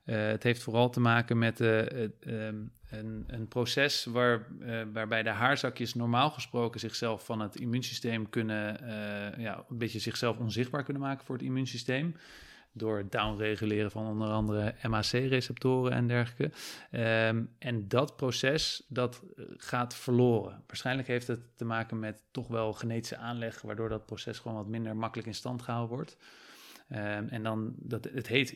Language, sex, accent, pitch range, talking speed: Dutch, male, Dutch, 110-125 Hz, 165 wpm